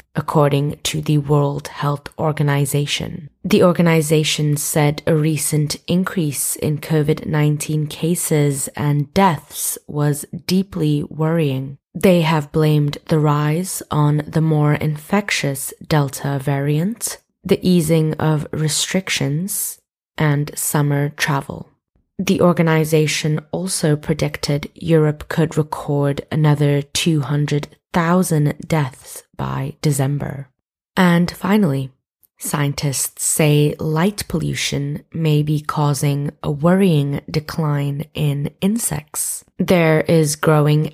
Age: 20-39